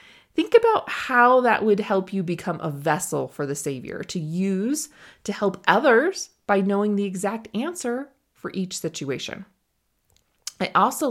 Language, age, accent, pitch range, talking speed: English, 30-49, American, 180-245 Hz, 150 wpm